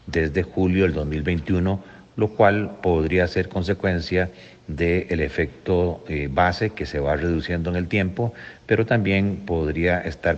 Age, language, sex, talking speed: 50-69, Spanish, male, 135 wpm